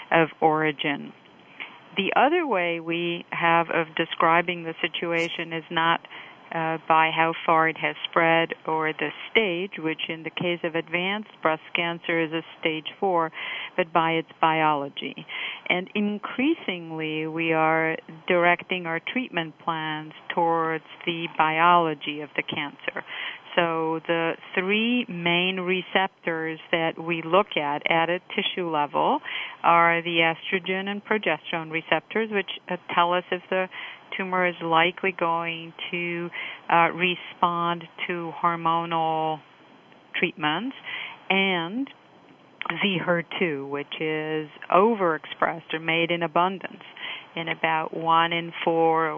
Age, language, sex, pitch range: 50-69, English, female, 160-180 Hz